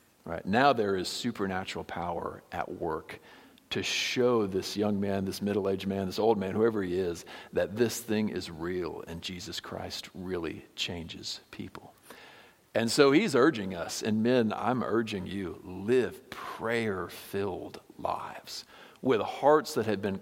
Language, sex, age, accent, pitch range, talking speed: English, male, 50-69, American, 95-115 Hz, 150 wpm